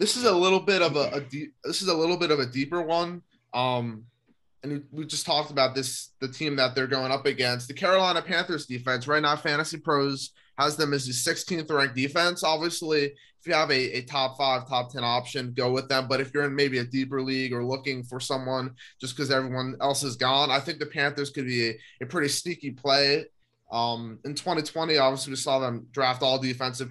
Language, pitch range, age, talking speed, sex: English, 125-140 Hz, 20-39, 225 wpm, male